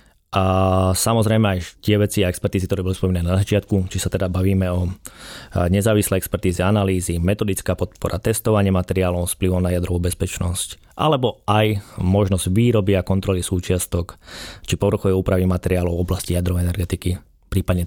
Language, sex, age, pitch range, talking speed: Slovak, male, 20-39, 90-105 Hz, 150 wpm